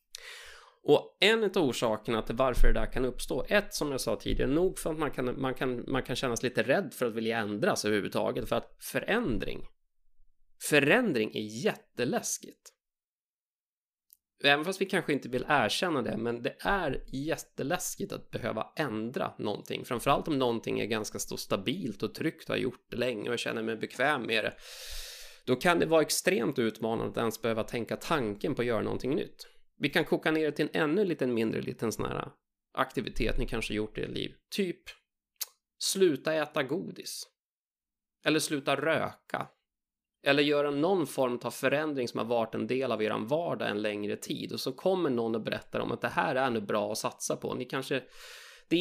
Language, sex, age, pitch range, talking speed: Swedish, male, 20-39, 115-150 Hz, 190 wpm